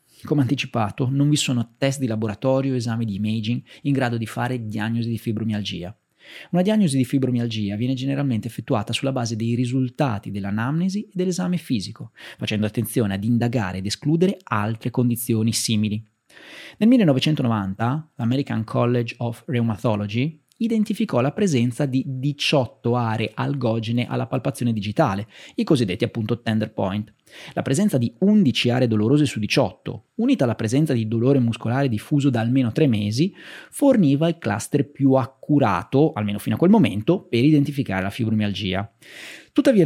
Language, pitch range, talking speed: Italian, 115-150 Hz, 150 wpm